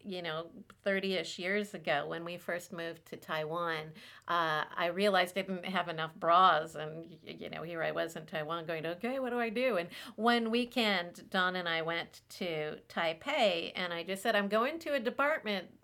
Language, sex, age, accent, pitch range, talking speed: English, female, 50-69, American, 180-235 Hz, 195 wpm